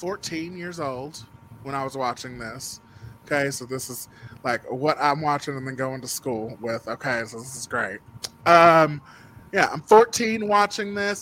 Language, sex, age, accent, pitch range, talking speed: English, male, 20-39, American, 130-185 Hz, 175 wpm